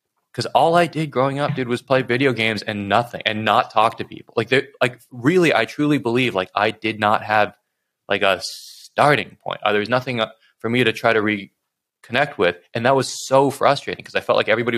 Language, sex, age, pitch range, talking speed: English, male, 20-39, 100-130 Hz, 220 wpm